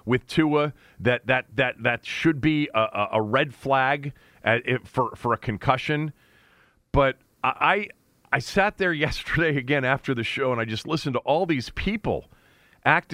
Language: English